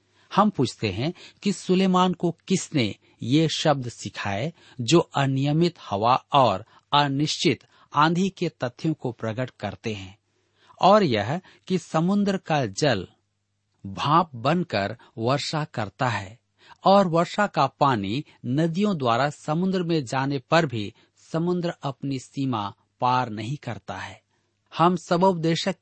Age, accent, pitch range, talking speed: 50-69, native, 110-165 Hz, 125 wpm